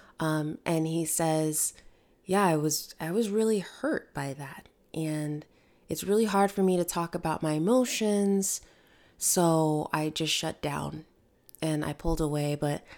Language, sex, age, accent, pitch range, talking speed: English, female, 20-39, American, 160-215 Hz, 155 wpm